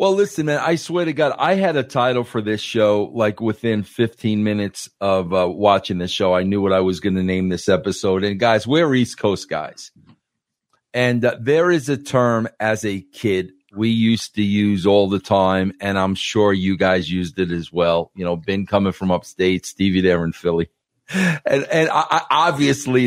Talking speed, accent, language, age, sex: 205 wpm, American, English, 50-69, male